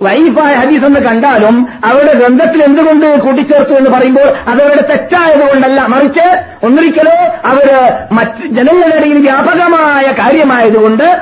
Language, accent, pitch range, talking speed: Malayalam, native, 170-275 Hz, 105 wpm